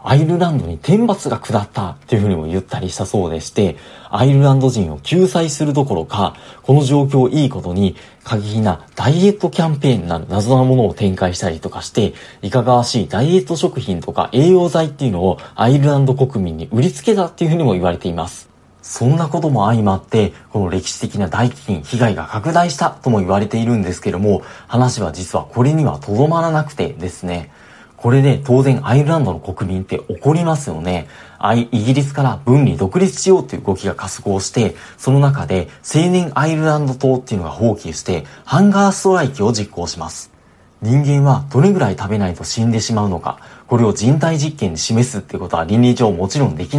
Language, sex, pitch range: Japanese, male, 100-145 Hz